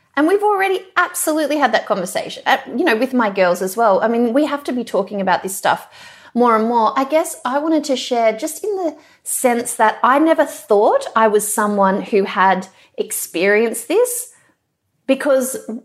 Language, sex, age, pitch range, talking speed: English, female, 30-49, 205-320 Hz, 185 wpm